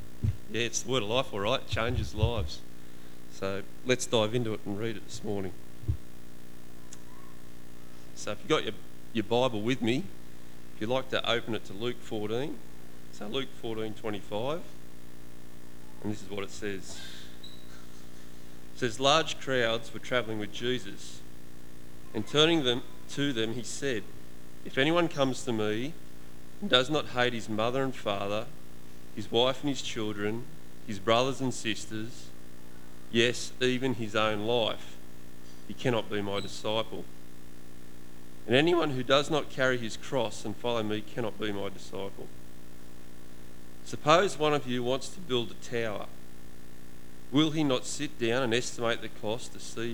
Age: 30-49